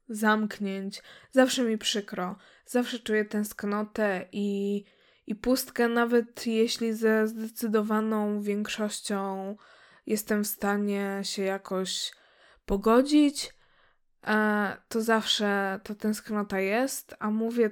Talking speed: 95 wpm